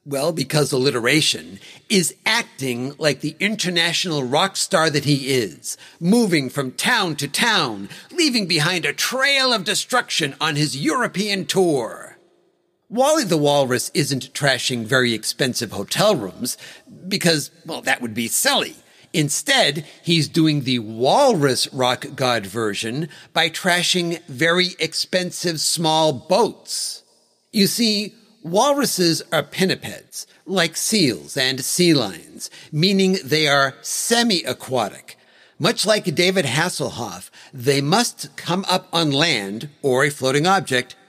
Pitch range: 135-190 Hz